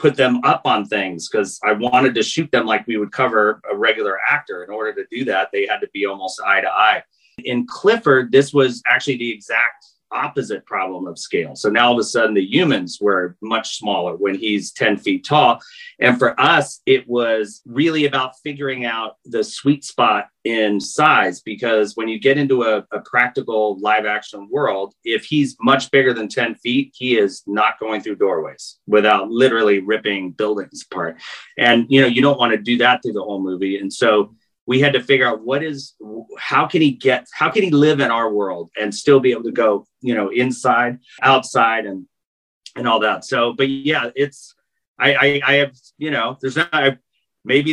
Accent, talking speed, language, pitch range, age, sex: American, 205 wpm, English, 110-140 Hz, 30-49, male